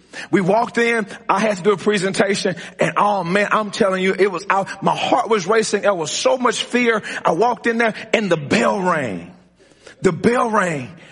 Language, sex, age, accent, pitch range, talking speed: English, male, 40-59, American, 200-265 Hz, 205 wpm